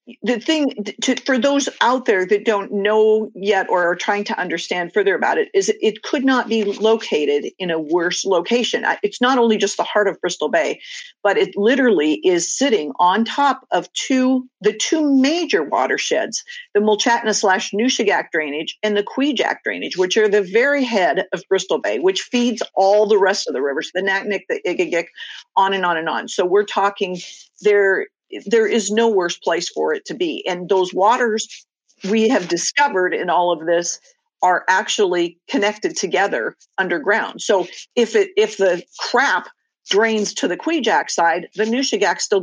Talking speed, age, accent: 180 wpm, 50-69, American